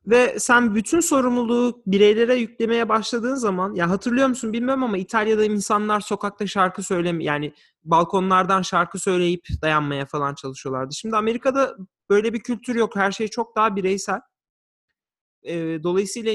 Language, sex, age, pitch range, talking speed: Turkish, male, 30-49, 190-255 Hz, 135 wpm